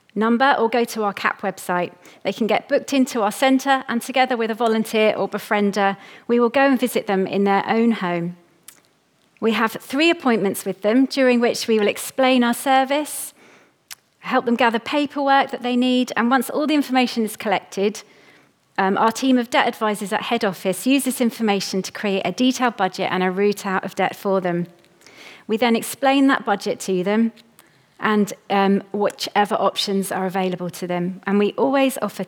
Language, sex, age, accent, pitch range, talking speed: English, female, 30-49, British, 190-235 Hz, 190 wpm